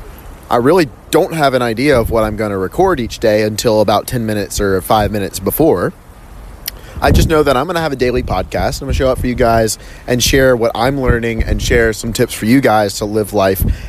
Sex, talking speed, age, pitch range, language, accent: male, 240 wpm, 30-49, 95-125 Hz, English, American